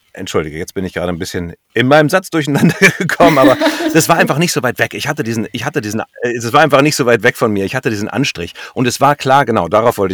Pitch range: 110-150 Hz